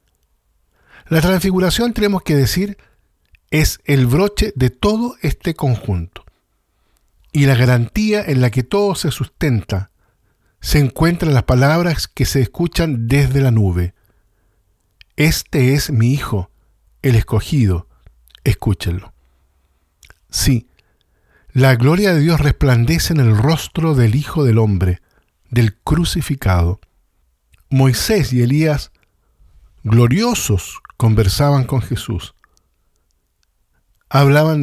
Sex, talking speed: male, 105 wpm